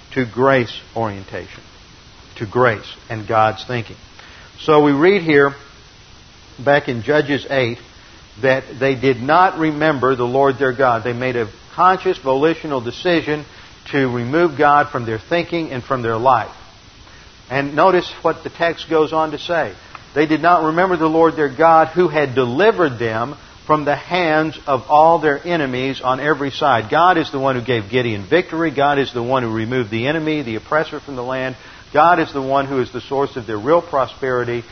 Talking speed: 180 wpm